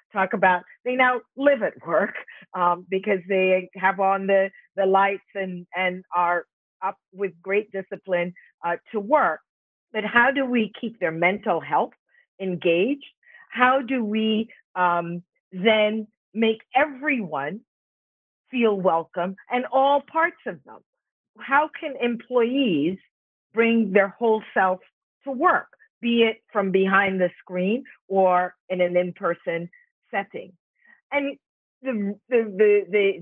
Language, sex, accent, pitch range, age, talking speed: English, female, American, 180-235 Hz, 40-59, 130 wpm